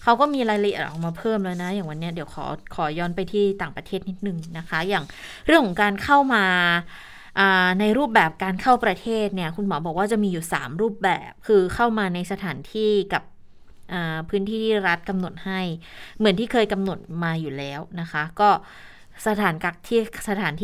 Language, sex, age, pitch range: Thai, female, 20-39, 175-220 Hz